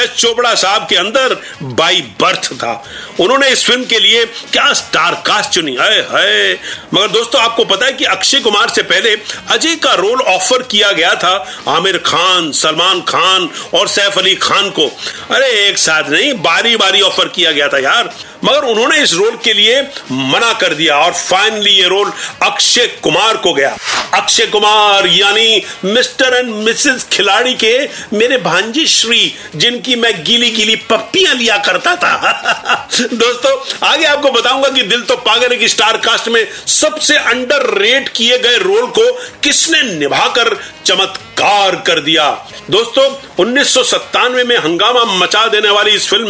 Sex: male